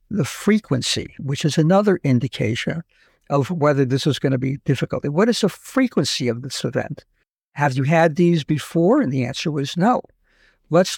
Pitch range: 135-180 Hz